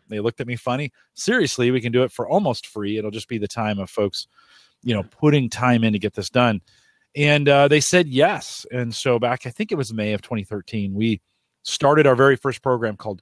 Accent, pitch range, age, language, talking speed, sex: American, 105-135 Hz, 40-59, English, 230 wpm, male